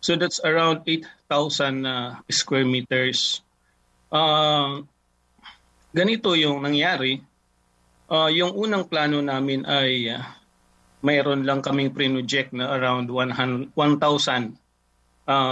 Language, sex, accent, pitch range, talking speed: English, male, Filipino, 125-155 Hz, 100 wpm